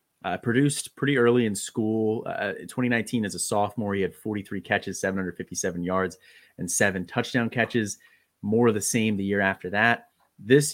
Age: 30-49